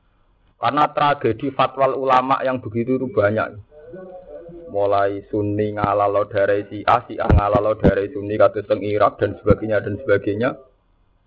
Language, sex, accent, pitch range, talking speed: Indonesian, male, native, 100-160 Hz, 115 wpm